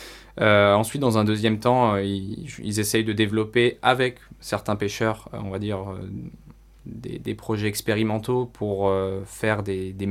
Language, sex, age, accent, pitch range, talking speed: French, male, 20-39, French, 100-120 Hz, 170 wpm